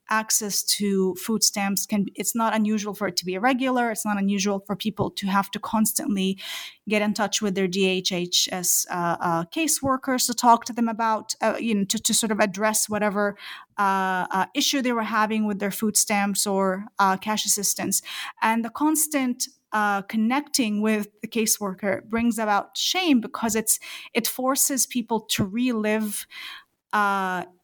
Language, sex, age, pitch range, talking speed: English, female, 30-49, 195-235 Hz, 170 wpm